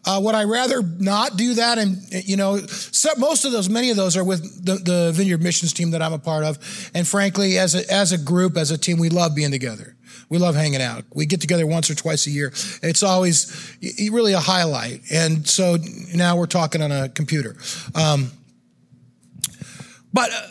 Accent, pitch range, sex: American, 165-205 Hz, male